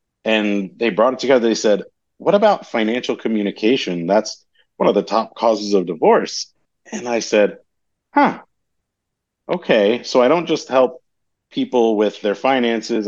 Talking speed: 150 wpm